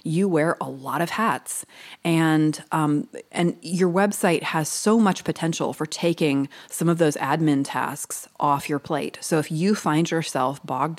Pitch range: 140-185 Hz